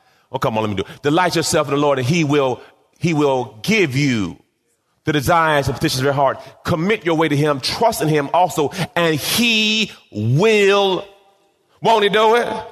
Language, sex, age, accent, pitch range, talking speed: English, male, 30-49, American, 125-185 Hz, 200 wpm